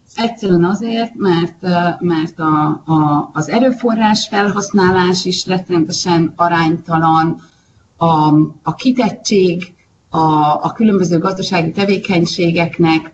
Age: 30-49